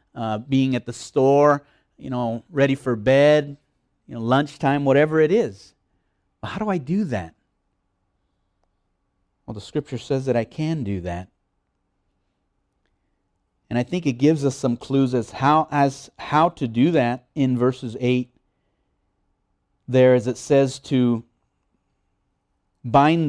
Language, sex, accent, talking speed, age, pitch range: English, male, American, 140 wpm, 30-49, 105-135 Hz